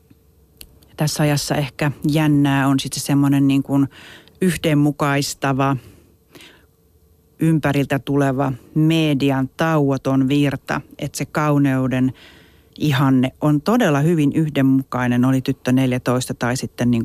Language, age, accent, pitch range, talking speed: Finnish, 40-59, native, 130-150 Hz, 100 wpm